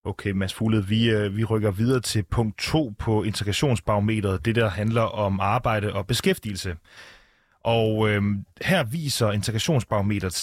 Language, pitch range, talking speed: Danish, 100-130 Hz, 140 wpm